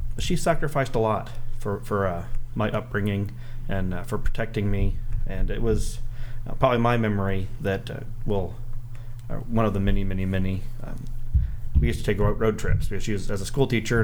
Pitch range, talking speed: 100-120 Hz, 190 wpm